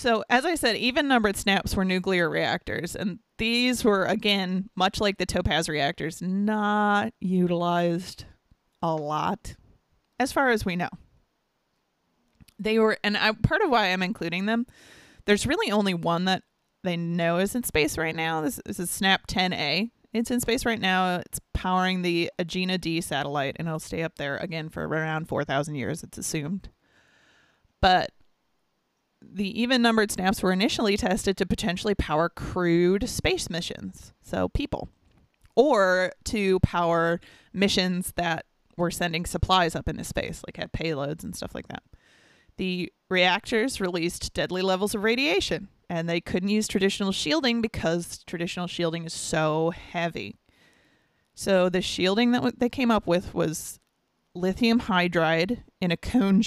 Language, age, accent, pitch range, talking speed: English, 30-49, American, 170-215 Hz, 155 wpm